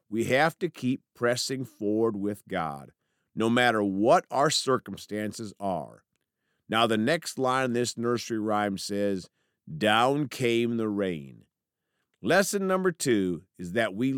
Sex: male